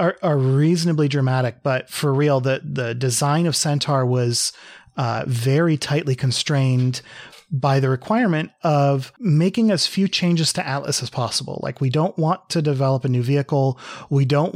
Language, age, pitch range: English, 30-49, 130-155 Hz